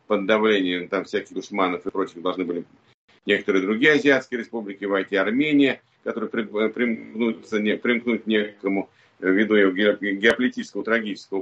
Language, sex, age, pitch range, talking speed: Russian, male, 50-69, 100-145 Hz, 125 wpm